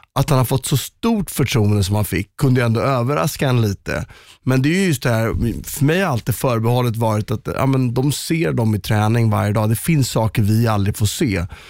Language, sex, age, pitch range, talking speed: Swedish, male, 20-39, 105-130 Hz, 235 wpm